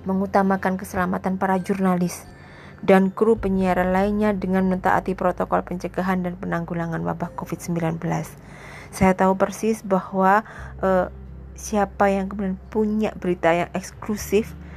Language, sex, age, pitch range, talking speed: Indonesian, female, 20-39, 175-200 Hz, 115 wpm